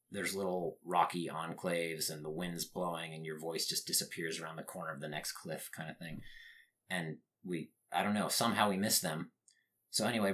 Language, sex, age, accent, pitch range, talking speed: English, male, 30-49, American, 80-105 Hz, 195 wpm